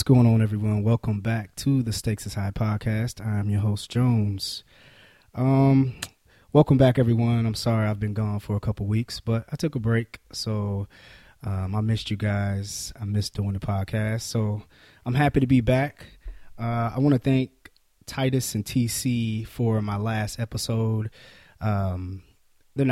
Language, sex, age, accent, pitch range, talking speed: English, male, 20-39, American, 105-125 Hz, 170 wpm